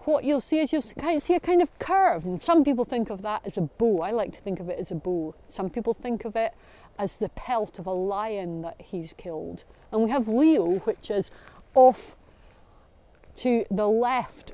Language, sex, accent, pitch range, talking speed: English, female, British, 195-265 Hz, 215 wpm